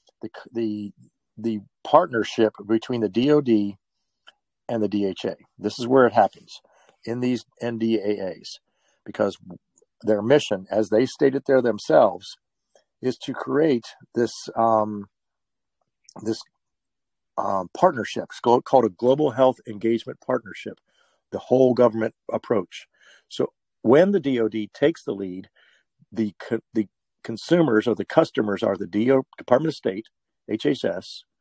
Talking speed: 125 wpm